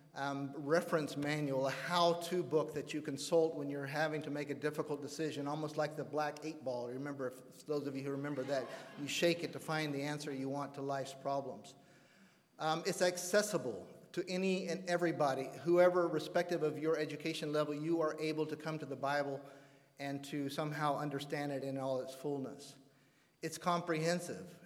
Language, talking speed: English, 180 wpm